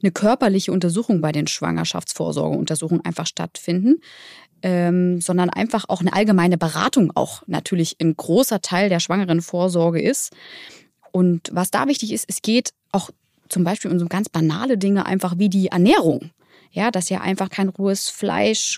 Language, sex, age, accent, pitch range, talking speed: German, female, 20-39, German, 180-220 Hz, 155 wpm